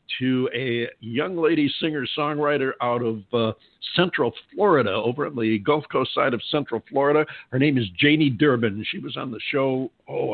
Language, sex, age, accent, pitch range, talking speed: English, male, 60-79, American, 110-135 Hz, 175 wpm